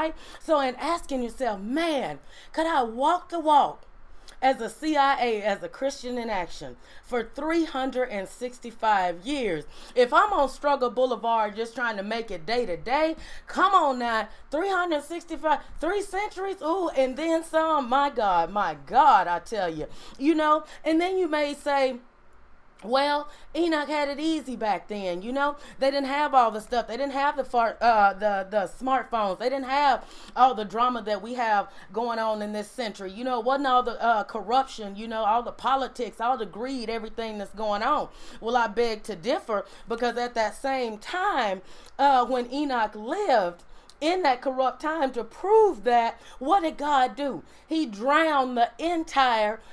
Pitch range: 225-290 Hz